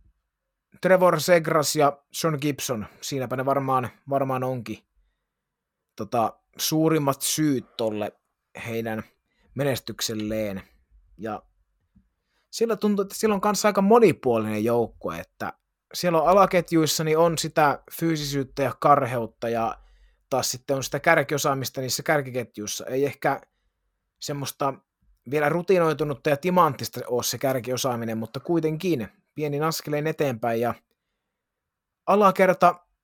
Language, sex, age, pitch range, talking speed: Finnish, male, 30-49, 115-155 Hz, 110 wpm